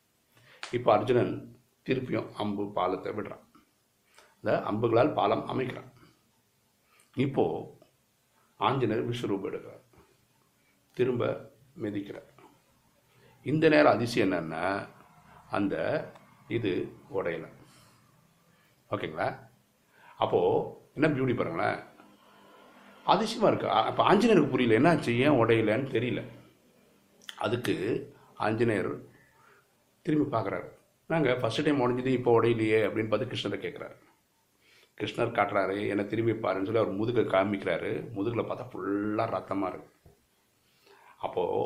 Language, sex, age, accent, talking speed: English, male, 60-79, Indian, 90 wpm